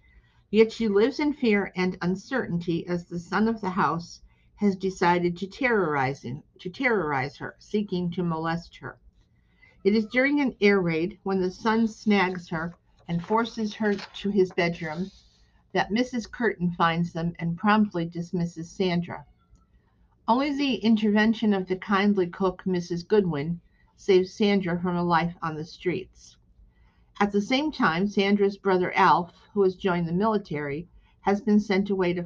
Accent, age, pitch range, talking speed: American, 50-69, 170-210 Hz, 155 wpm